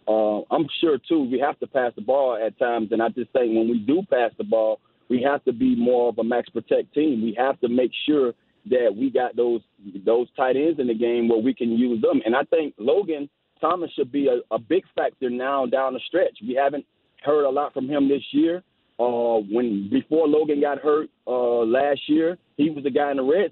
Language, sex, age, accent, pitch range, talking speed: English, male, 40-59, American, 120-140 Hz, 235 wpm